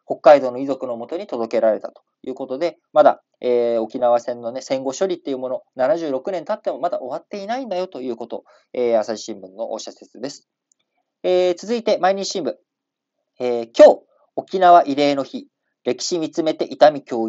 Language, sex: Japanese, male